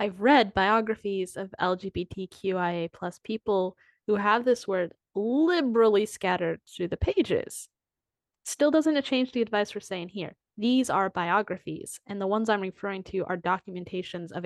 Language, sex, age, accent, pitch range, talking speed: English, female, 10-29, American, 180-225 Hz, 155 wpm